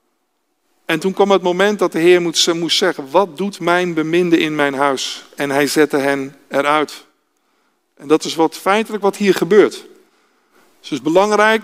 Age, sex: 50-69, male